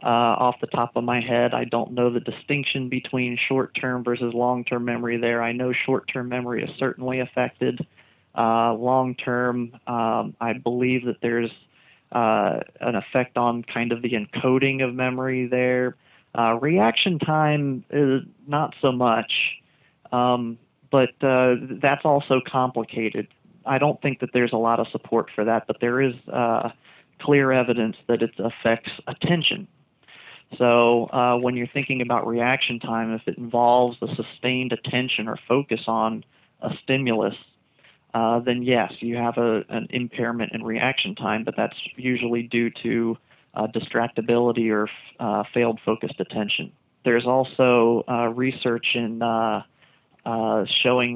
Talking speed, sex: 145 wpm, male